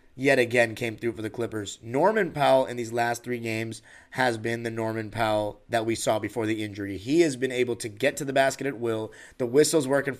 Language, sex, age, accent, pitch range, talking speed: English, male, 20-39, American, 120-145 Hz, 230 wpm